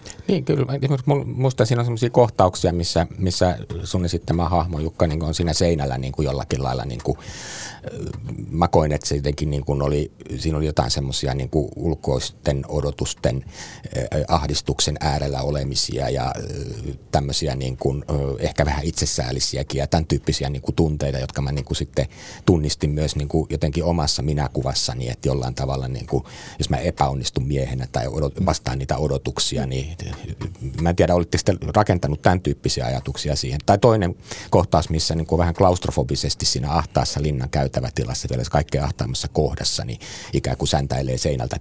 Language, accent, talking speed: Finnish, native, 165 wpm